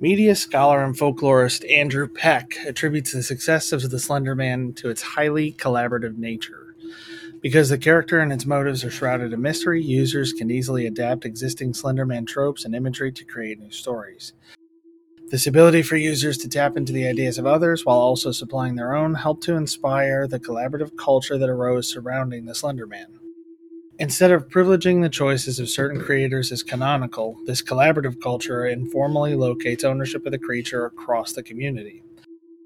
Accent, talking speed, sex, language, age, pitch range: American, 170 wpm, male, English, 30-49, 125-160 Hz